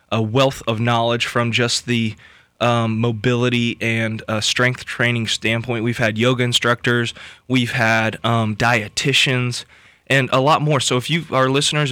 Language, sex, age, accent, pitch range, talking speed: English, male, 20-39, American, 115-130 Hz, 155 wpm